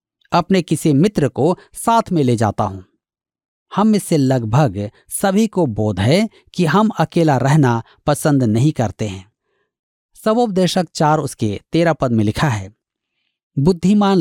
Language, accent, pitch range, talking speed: Hindi, native, 130-195 Hz, 140 wpm